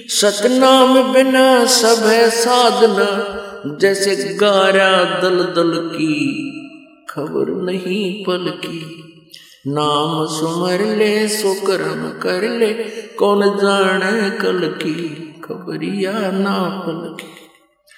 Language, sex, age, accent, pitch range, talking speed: Hindi, male, 50-69, native, 195-255 Hz, 95 wpm